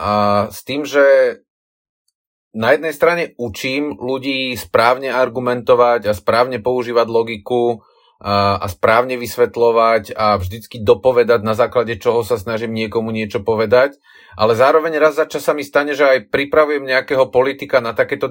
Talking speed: 150 wpm